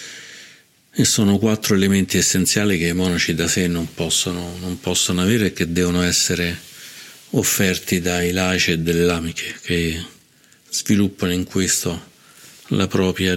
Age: 50-69